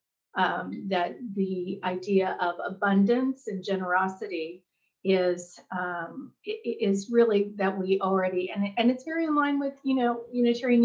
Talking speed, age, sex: 145 wpm, 30-49, female